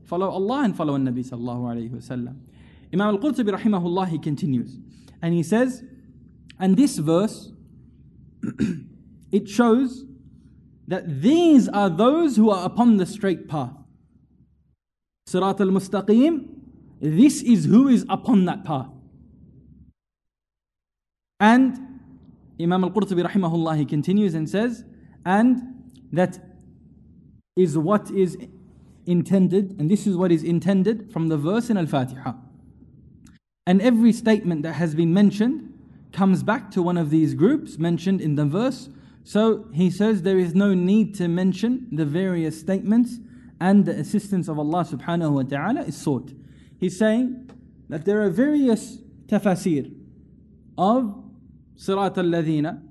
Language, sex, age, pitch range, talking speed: English, male, 20-39, 160-220 Hz, 135 wpm